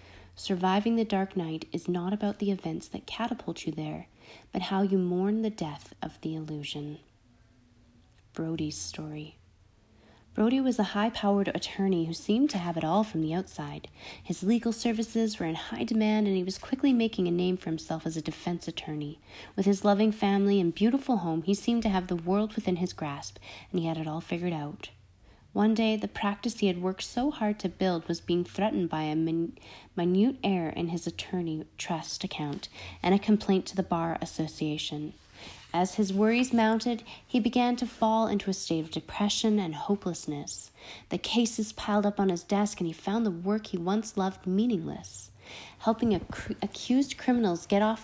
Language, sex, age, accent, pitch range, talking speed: English, female, 30-49, American, 160-215 Hz, 185 wpm